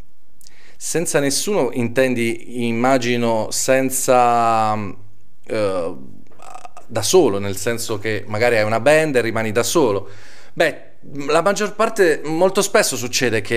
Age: 30-49